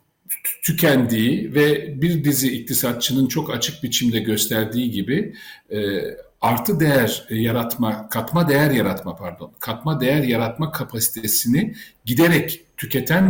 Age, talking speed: 50-69, 115 wpm